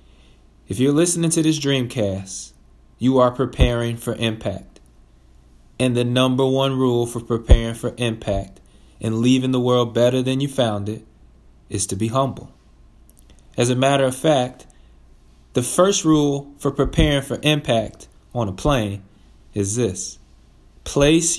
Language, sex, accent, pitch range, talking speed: English, male, American, 100-140 Hz, 145 wpm